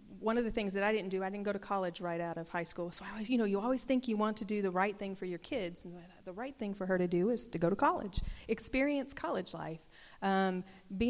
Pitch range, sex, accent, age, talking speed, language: 175-210 Hz, female, American, 40-59, 290 wpm, English